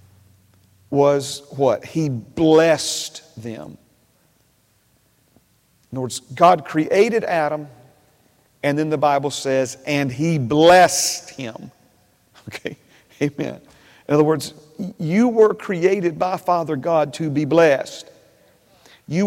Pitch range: 140-180 Hz